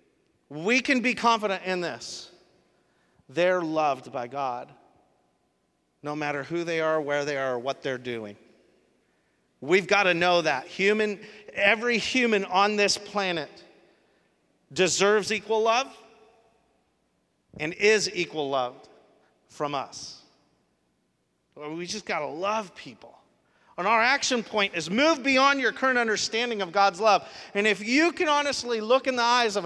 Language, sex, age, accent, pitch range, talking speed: English, male, 40-59, American, 150-220 Hz, 145 wpm